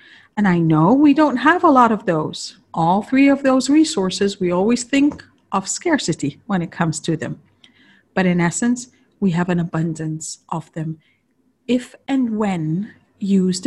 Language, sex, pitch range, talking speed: English, female, 165-235 Hz, 165 wpm